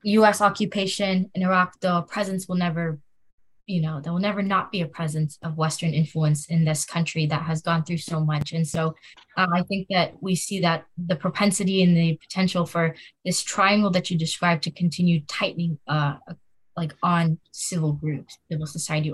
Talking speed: 185 wpm